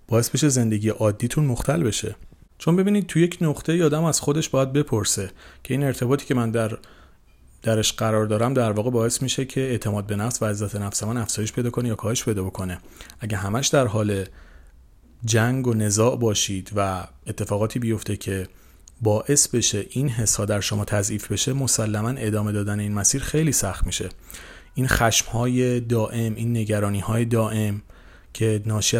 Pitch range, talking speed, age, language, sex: 105-135 Hz, 170 wpm, 30-49, Persian, male